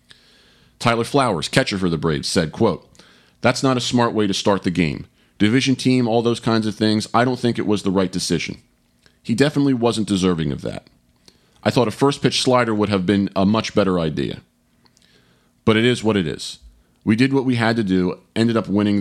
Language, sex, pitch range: English, male, 90-125 Hz